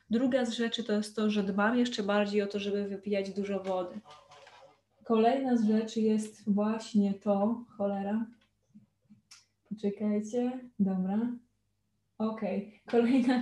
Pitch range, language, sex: 205-235 Hz, Polish, female